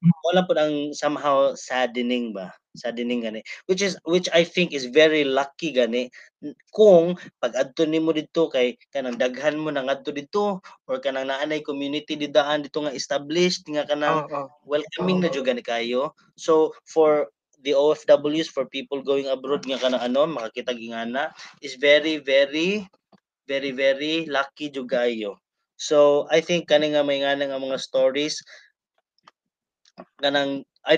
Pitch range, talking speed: 125-150 Hz, 75 wpm